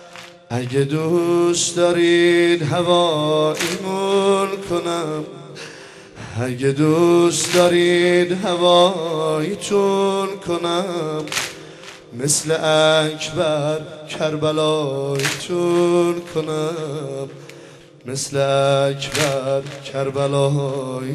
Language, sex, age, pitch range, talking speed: Persian, male, 30-49, 150-175 Hz, 55 wpm